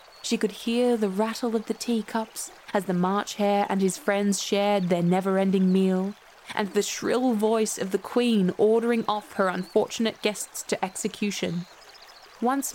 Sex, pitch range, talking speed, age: female, 195-235 Hz, 160 wpm, 20-39